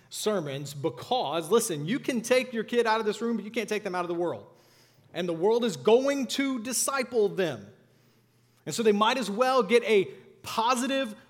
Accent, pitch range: American, 150-215 Hz